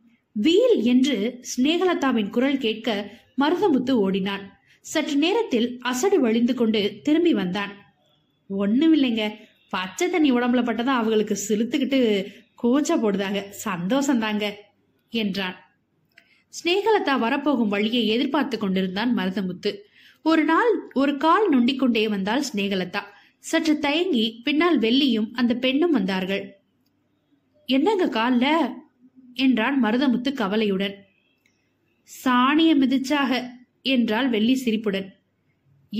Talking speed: 90 wpm